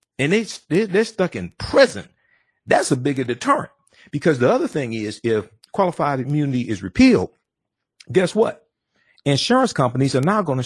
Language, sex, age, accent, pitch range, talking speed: English, male, 50-69, American, 115-165 Hz, 160 wpm